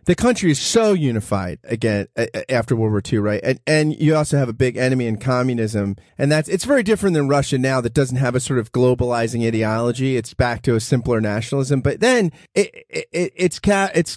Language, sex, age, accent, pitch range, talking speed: English, male, 30-49, American, 130-195 Hz, 210 wpm